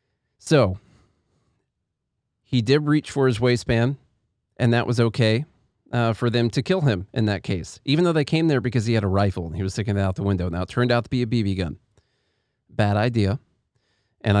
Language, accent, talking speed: English, American, 210 wpm